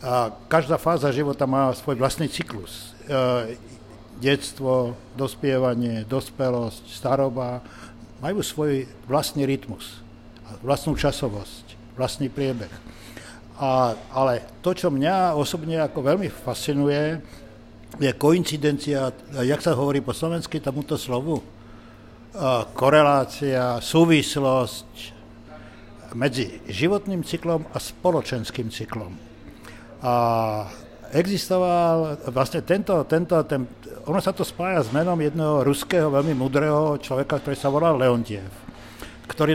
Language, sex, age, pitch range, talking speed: Slovak, male, 60-79, 120-150 Hz, 100 wpm